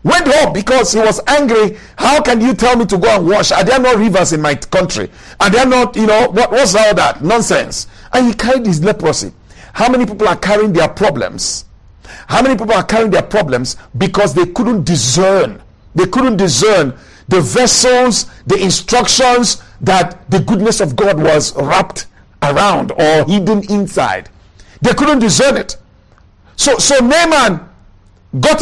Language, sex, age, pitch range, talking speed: English, male, 50-69, 170-245 Hz, 170 wpm